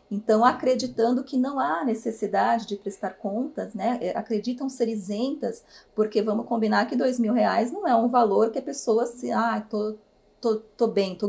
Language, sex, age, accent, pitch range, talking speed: Portuguese, female, 30-49, Brazilian, 205-250 Hz, 185 wpm